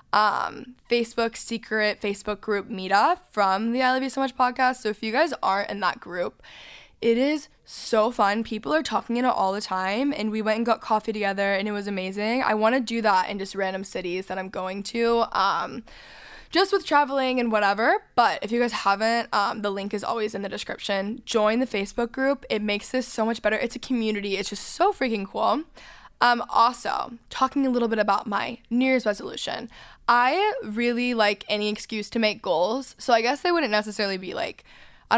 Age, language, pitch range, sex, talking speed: 10-29, English, 205-255 Hz, female, 210 wpm